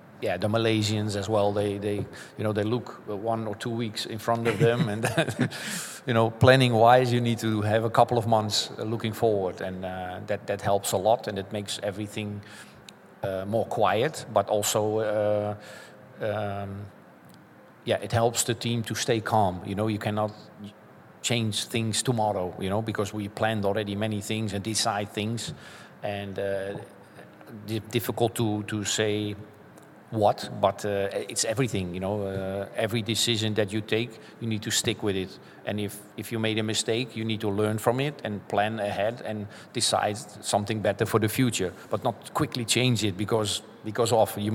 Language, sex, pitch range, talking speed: English, male, 100-115 Hz, 185 wpm